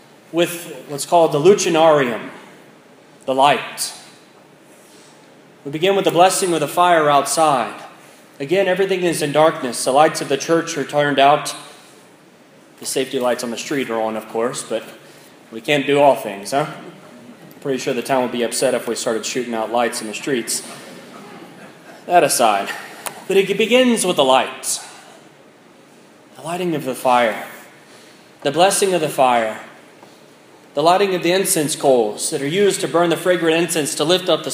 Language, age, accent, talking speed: English, 20-39, American, 170 wpm